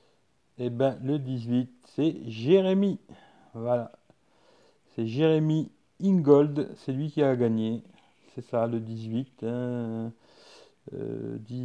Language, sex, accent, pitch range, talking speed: English, male, French, 125-165 Hz, 120 wpm